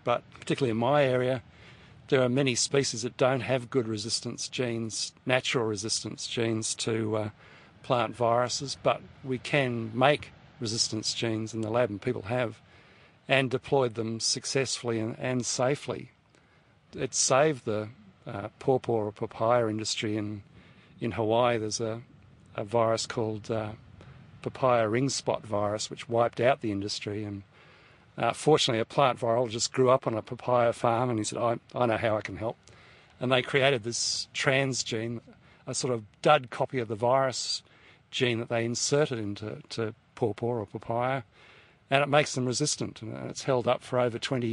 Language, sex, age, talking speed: English, male, 50-69, 165 wpm